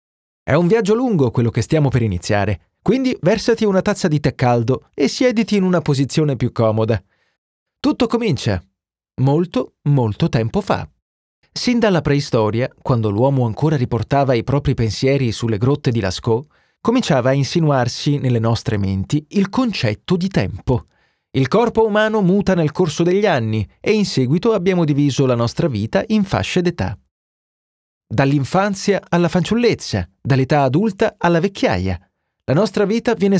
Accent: native